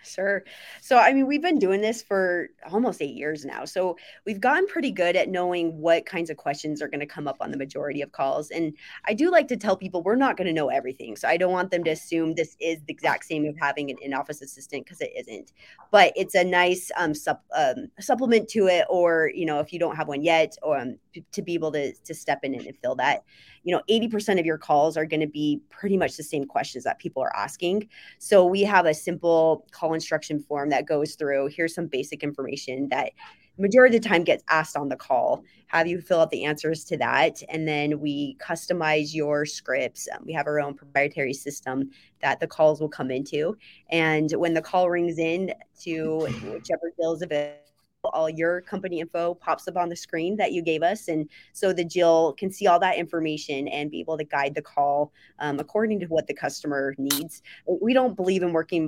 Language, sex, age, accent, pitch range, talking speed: English, female, 20-39, American, 150-185 Hz, 225 wpm